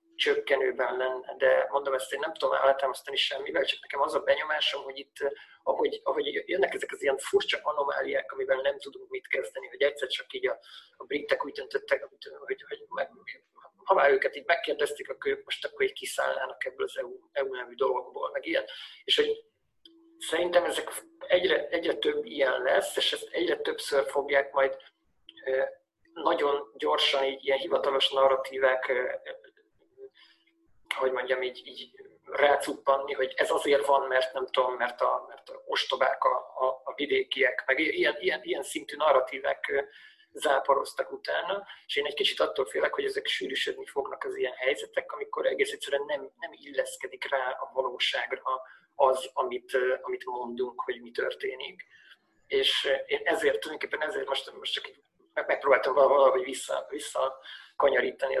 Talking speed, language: 155 wpm, Hungarian